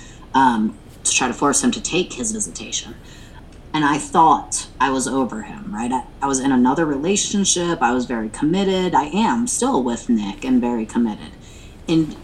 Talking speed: 180 wpm